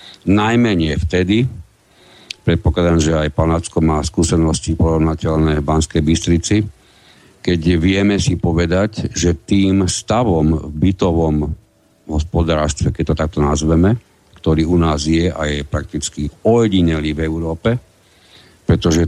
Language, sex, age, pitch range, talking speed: Slovak, male, 60-79, 80-105 Hz, 115 wpm